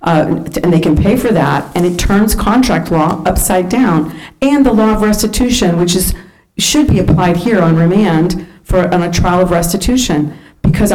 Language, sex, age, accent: English, female, 50-69, American